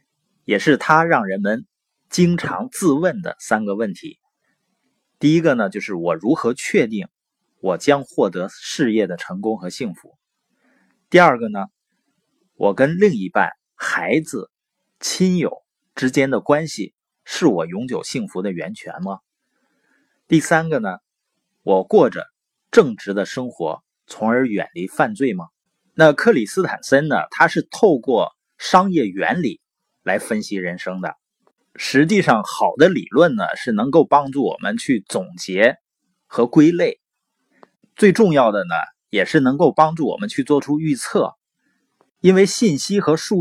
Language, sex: Chinese, male